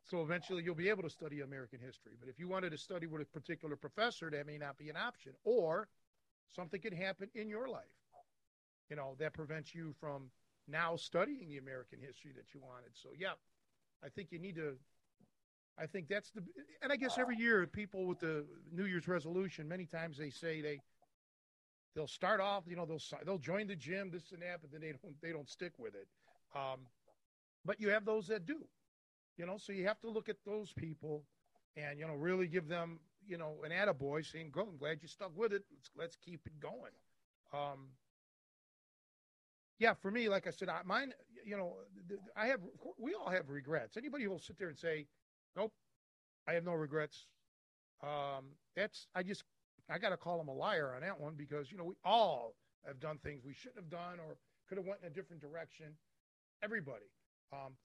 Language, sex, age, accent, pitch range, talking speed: English, male, 50-69, American, 150-195 Hz, 205 wpm